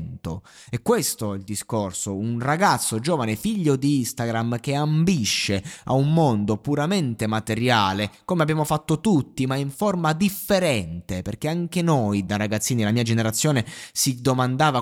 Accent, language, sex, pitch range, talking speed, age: native, Italian, male, 110-160 Hz, 145 wpm, 20-39